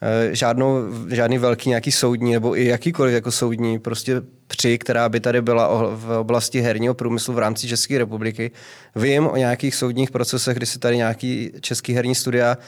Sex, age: male, 20-39